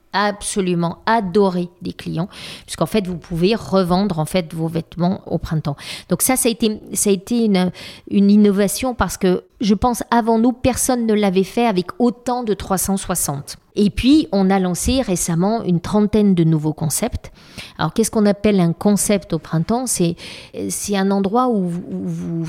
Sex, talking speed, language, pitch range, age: female, 180 wpm, French, 165-210 Hz, 40-59